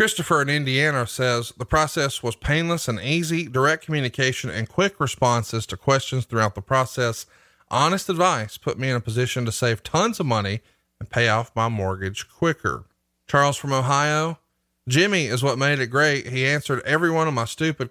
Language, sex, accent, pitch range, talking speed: English, male, American, 115-150 Hz, 180 wpm